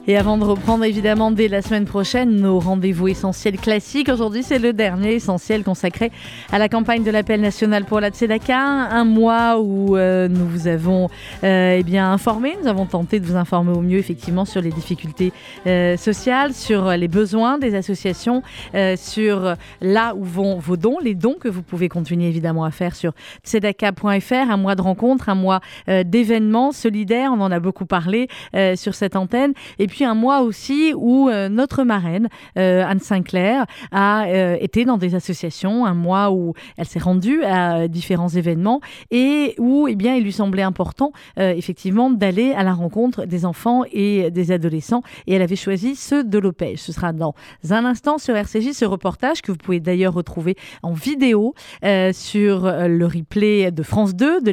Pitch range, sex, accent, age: 180-230 Hz, female, French, 30-49